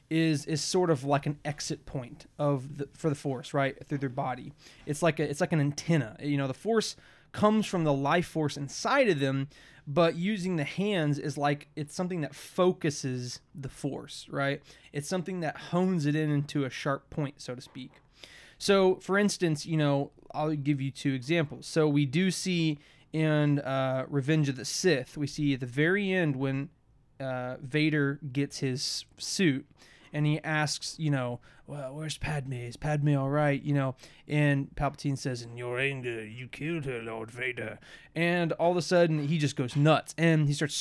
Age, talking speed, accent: 20-39, 195 wpm, American